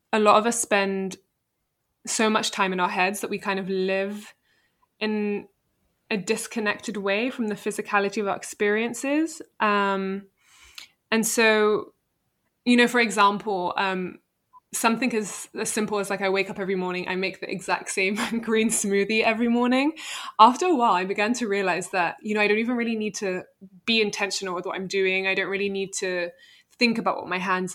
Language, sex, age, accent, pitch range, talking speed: English, female, 20-39, British, 190-220 Hz, 185 wpm